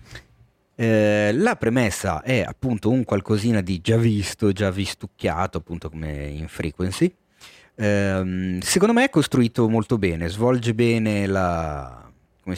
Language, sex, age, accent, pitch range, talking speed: Italian, male, 30-49, native, 95-115 Hz, 130 wpm